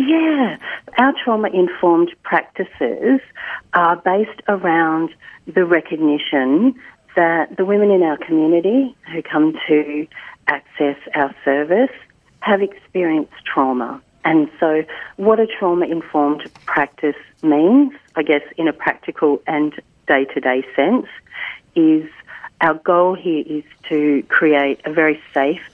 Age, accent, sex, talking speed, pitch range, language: 40-59, Australian, female, 115 wpm, 150-205 Hz, English